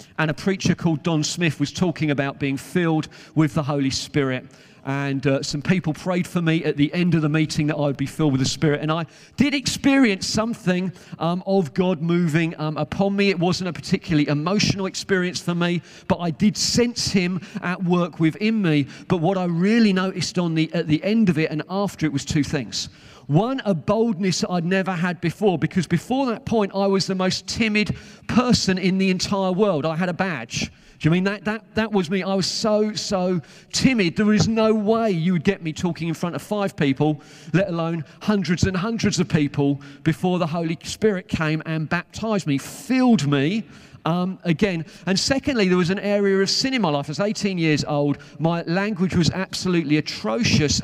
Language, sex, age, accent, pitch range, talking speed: English, male, 40-59, British, 155-195 Hz, 205 wpm